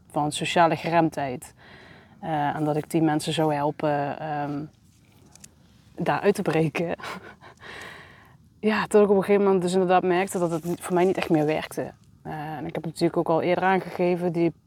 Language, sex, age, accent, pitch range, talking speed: Dutch, female, 30-49, Dutch, 160-190 Hz, 170 wpm